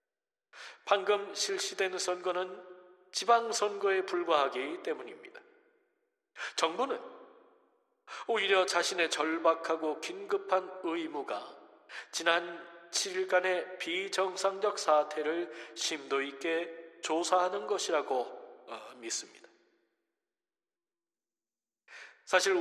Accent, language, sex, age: native, Korean, male, 40-59